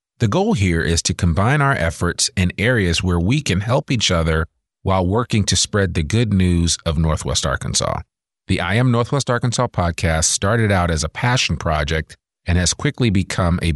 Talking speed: 190 wpm